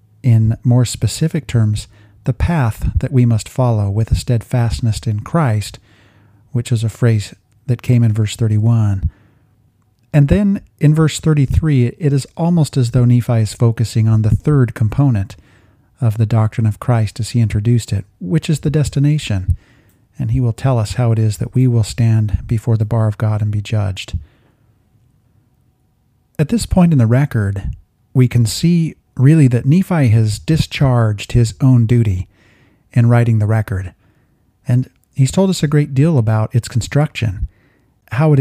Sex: male